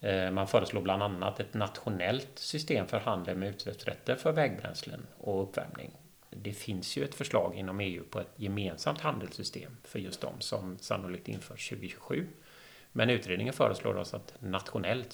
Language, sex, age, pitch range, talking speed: Swedish, male, 30-49, 95-125 Hz, 155 wpm